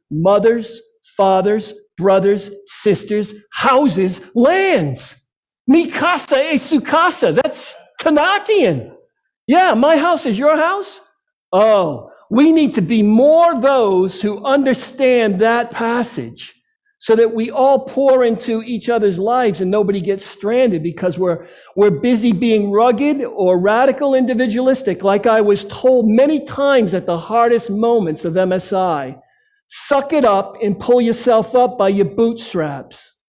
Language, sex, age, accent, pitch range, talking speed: English, male, 50-69, American, 185-255 Hz, 130 wpm